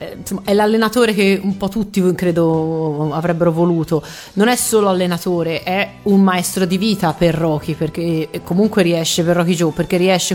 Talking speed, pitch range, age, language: 170 wpm, 170-200 Hz, 30-49, Italian